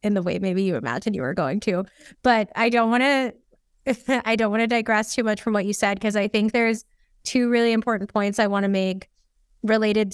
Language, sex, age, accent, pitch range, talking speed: English, female, 20-39, American, 195-225 Hz, 230 wpm